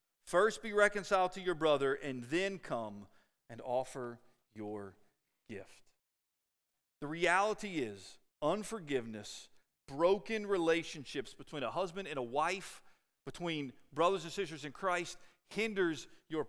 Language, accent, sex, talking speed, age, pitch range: English, American, male, 120 wpm, 40-59, 155-215 Hz